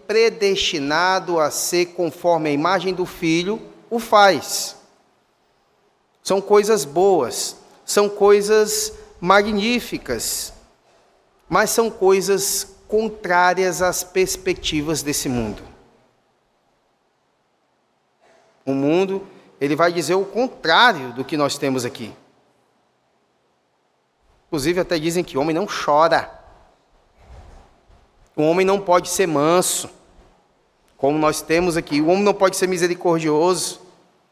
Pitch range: 155-205 Hz